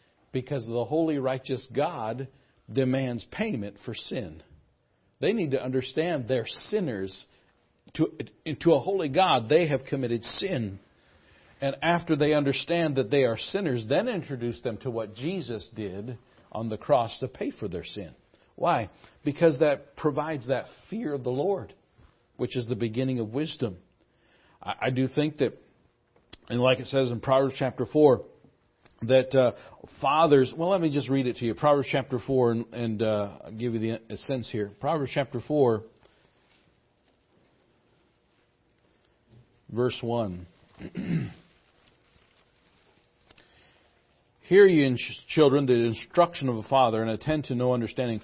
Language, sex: English, male